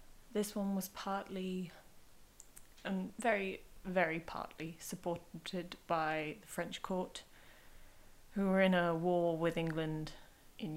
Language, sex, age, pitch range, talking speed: English, female, 20-39, 165-200 Hz, 115 wpm